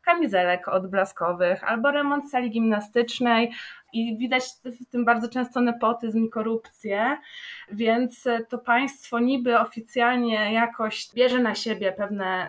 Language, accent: Polish, native